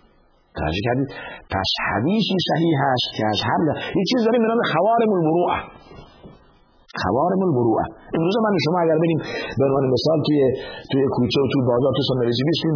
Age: 50-69